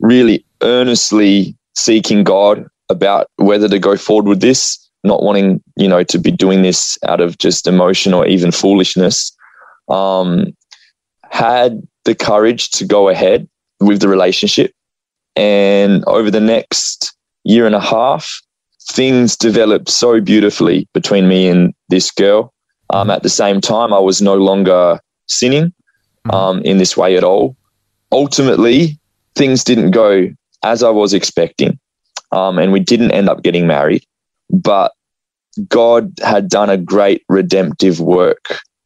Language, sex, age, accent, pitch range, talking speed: English, male, 20-39, Australian, 90-105 Hz, 145 wpm